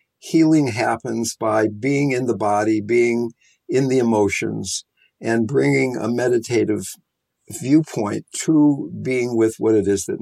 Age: 50-69